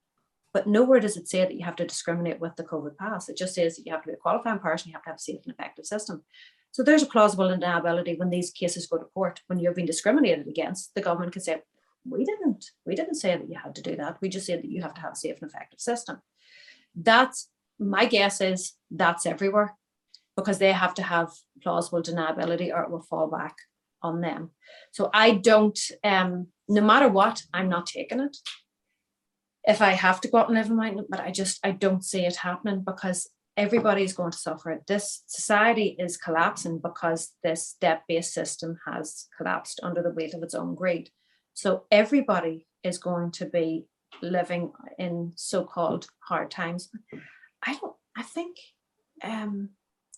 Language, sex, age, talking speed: English, female, 30-49, 195 wpm